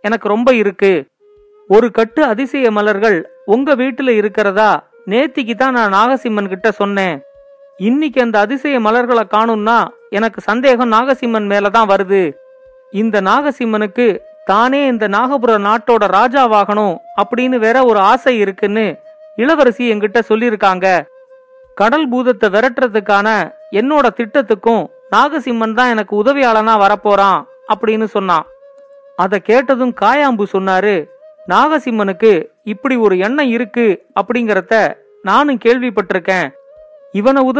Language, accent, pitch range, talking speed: Tamil, native, 210-265 Hz, 85 wpm